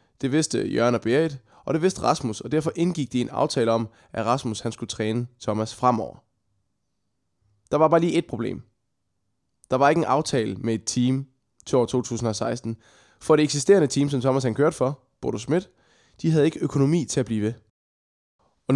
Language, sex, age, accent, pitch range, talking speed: Danish, male, 20-39, native, 115-145 Hz, 190 wpm